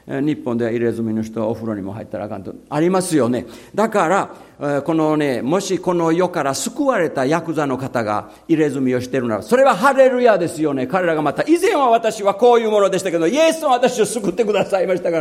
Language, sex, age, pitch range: Japanese, male, 50-69, 115-160 Hz